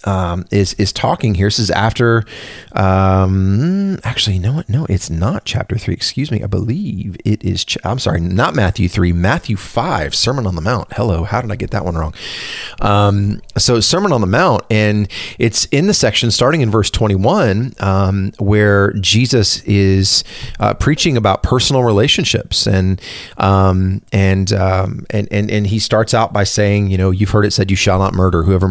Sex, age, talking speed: male, 30-49, 195 wpm